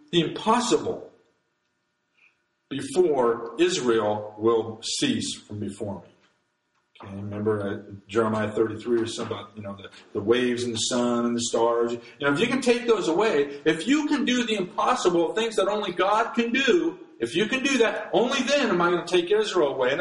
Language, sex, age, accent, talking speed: English, male, 50-69, American, 170 wpm